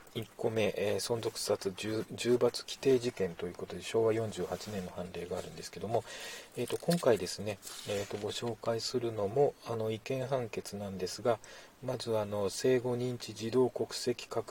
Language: Japanese